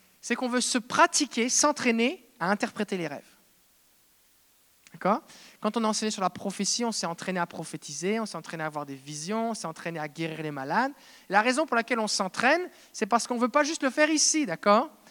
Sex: male